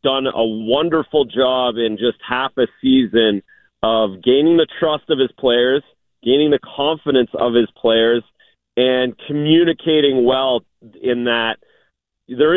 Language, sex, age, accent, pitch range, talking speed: English, male, 40-59, American, 115-145 Hz, 135 wpm